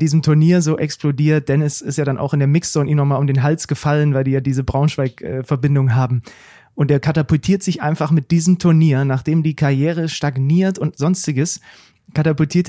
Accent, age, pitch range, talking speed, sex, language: German, 30-49, 135-170 Hz, 185 wpm, male, German